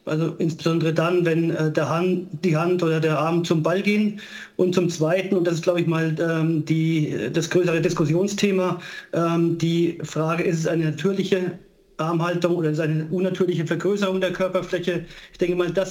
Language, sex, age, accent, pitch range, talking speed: German, male, 40-59, German, 160-180 Hz, 160 wpm